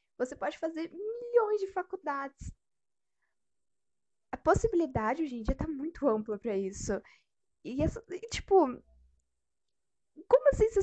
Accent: Brazilian